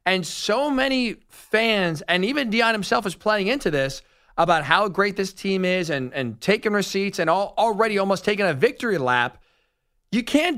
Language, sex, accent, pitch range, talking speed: English, male, American, 180-230 Hz, 180 wpm